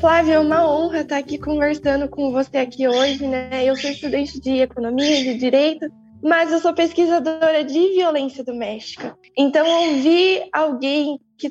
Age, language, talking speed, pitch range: 10-29, Portuguese, 160 wpm, 255-310 Hz